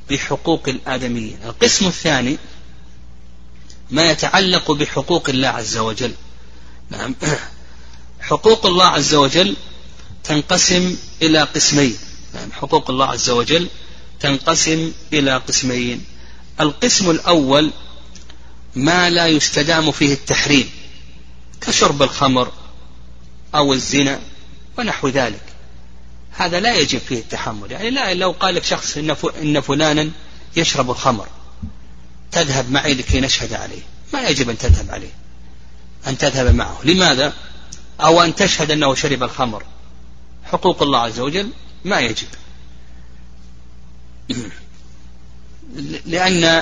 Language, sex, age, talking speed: Arabic, male, 40-59, 105 wpm